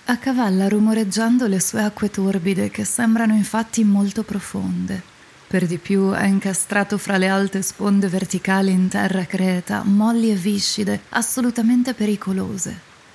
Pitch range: 195-225 Hz